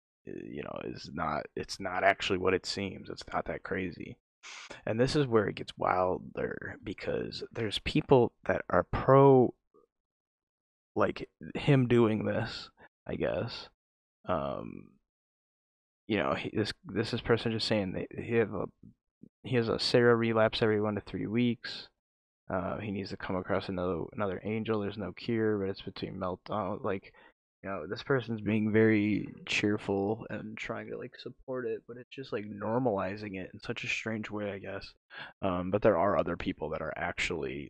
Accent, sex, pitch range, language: American, male, 95-115 Hz, English